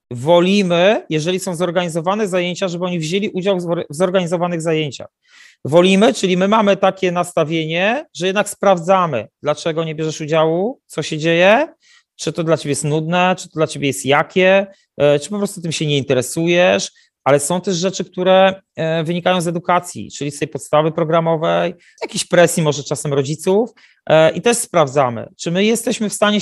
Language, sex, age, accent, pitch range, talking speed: Polish, male, 30-49, native, 155-190 Hz, 165 wpm